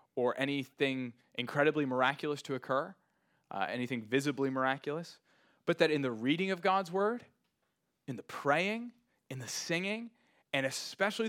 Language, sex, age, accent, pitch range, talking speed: English, male, 20-39, American, 135-180 Hz, 140 wpm